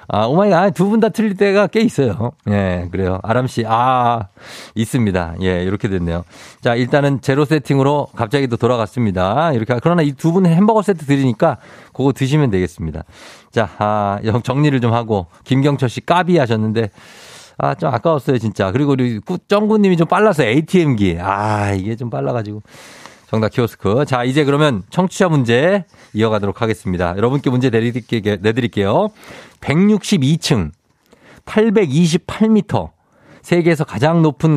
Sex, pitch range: male, 110-160 Hz